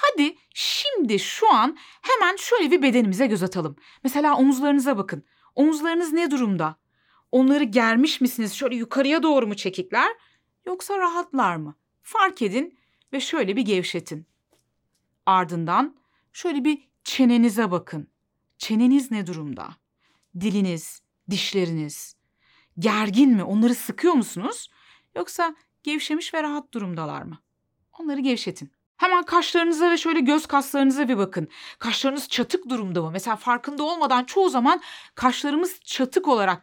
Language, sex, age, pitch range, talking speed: Turkish, female, 30-49, 190-300 Hz, 125 wpm